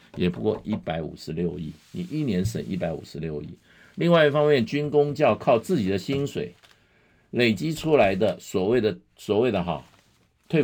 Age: 50-69